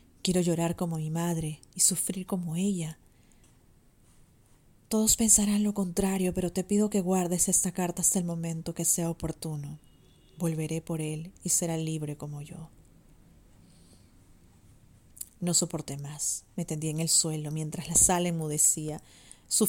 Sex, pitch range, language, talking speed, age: female, 155-175 Hz, Spanish, 145 wpm, 30-49